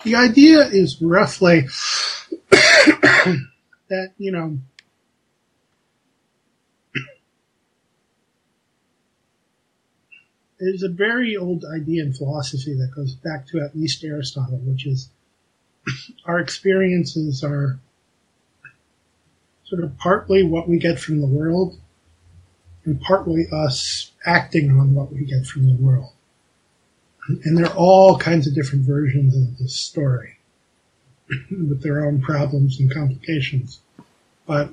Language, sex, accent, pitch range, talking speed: English, male, American, 135-175 Hz, 110 wpm